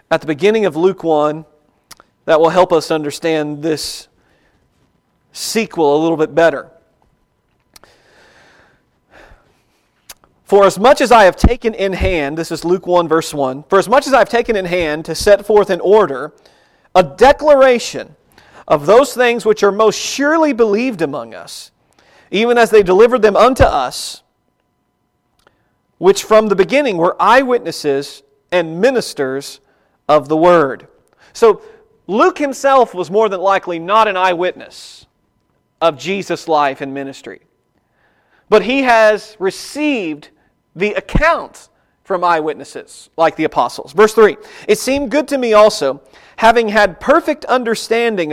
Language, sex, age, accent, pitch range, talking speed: English, male, 40-59, American, 160-230 Hz, 140 wpm